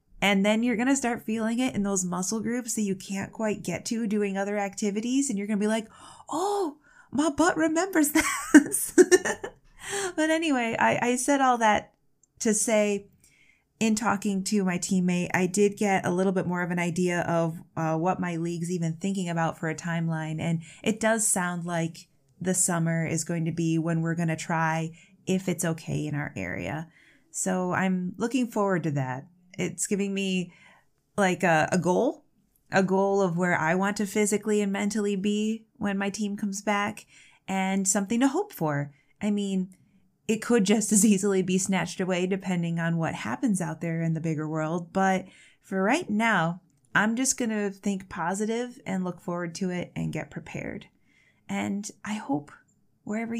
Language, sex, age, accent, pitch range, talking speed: English, female, 20-39, American, 170-220 Hz, 185 wpm